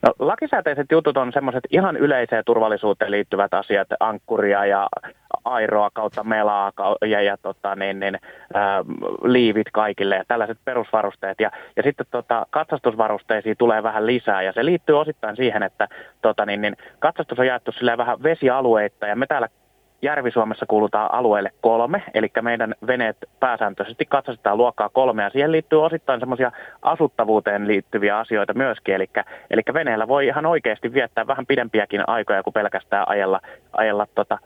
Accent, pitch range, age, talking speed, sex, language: native, 105-125 Hz, 20-39, 150 wpm, male, Finnish